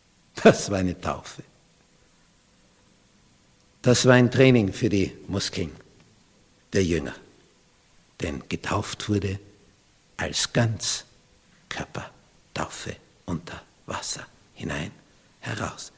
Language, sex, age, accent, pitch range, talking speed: German, male, 60-79, Austrian, 90-120 Hz, 85 wpm